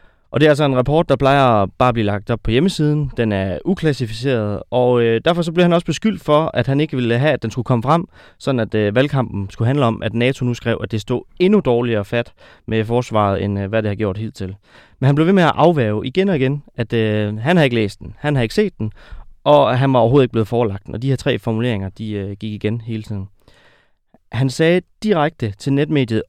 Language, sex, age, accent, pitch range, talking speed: Danish, male, 30-49, native, 110-145 Hz, 255 wpm